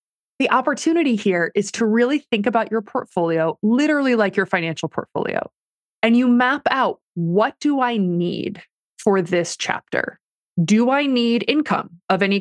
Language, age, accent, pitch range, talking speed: English, 20-39, American, 190-250 Hz, 155 wpm